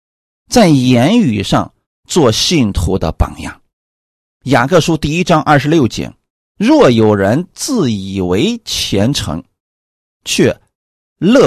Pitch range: 105-175 Hz